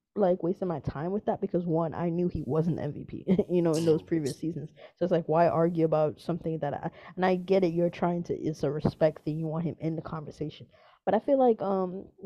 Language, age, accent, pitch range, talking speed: English, 20-39, American, 155-185 Hz, 245 wpm